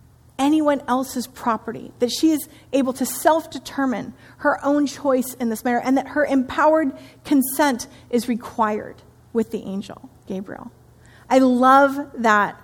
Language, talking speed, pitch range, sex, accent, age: English, 140 wpm, 215-265 Hz, female, American, 30-49